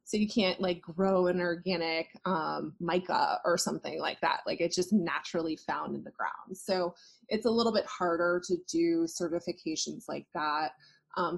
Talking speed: 175 wpm